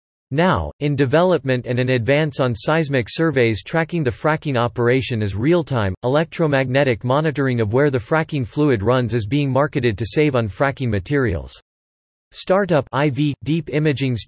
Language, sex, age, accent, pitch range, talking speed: English, male, 40-59, American, 120-150 Hz, 145 wpm